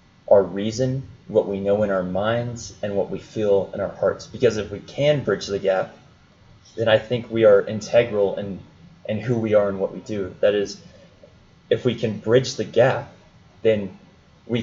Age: 20-39